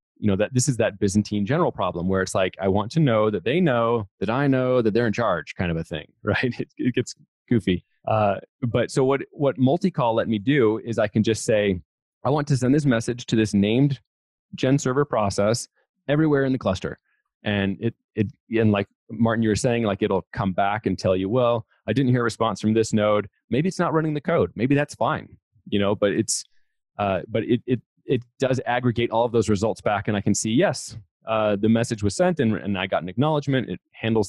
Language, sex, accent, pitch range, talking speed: English, male, American, 100-125 Hz, 235 wpm